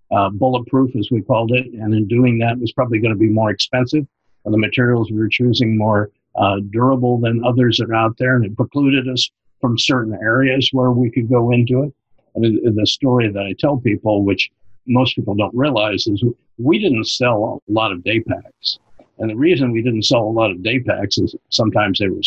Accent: American